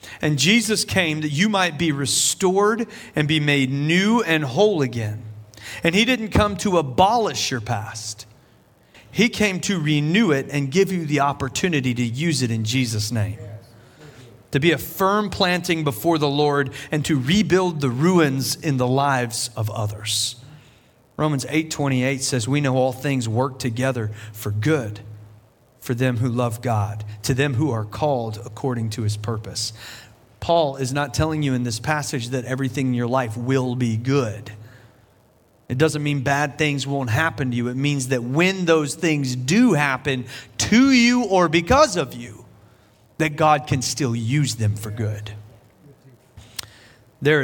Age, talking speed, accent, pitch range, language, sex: 40-59, 165 wpm, American, 115-155 Hz, English, male